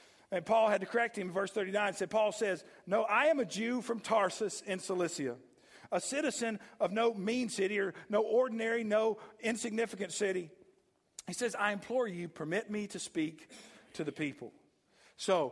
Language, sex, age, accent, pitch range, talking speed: English, male, 50-69, American, 200-255 Hz, 180 wpm